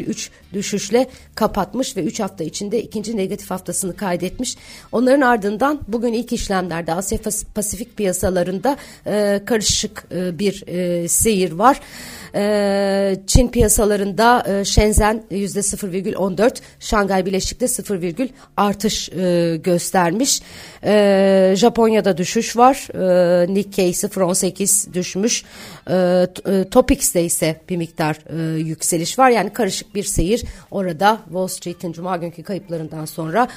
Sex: female